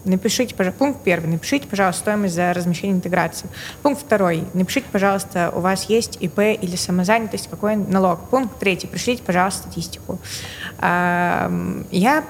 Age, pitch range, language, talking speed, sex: 20-39, 180-215 Hz, Russian, 135 wpm, female